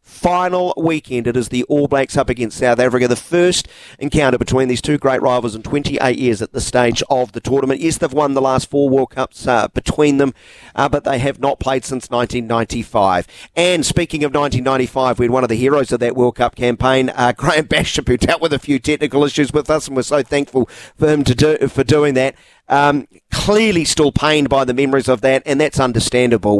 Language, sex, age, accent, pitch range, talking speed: English, male, 40-59, Australian, 120-150 Hz, 220 wpm